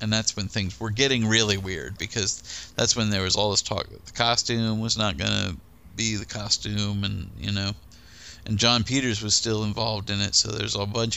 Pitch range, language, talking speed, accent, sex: 100-120 Hz, English, 220 wpm, American, male